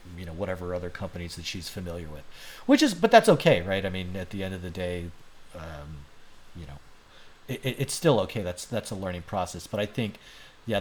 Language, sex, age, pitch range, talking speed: English, male, 40-59, 95-120 Hz, 210 wpm